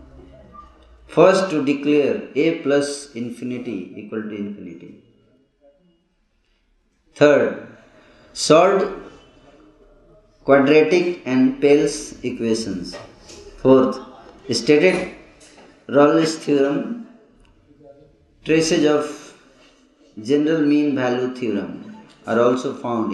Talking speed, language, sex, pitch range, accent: 75 wpm, Hindi, male, 115-145 Hz, native